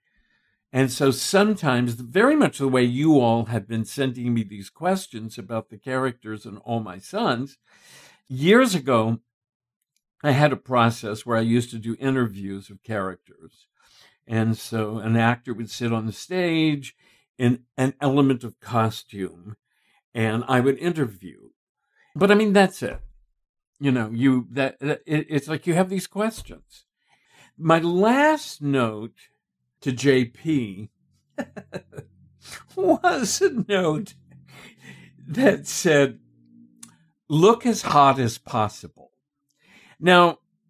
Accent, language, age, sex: American, English, 60-79, male